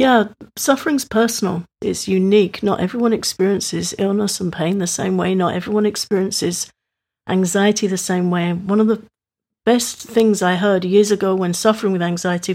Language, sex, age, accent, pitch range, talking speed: English, female, 50-69, British, 185-220 Hz, 165 wpm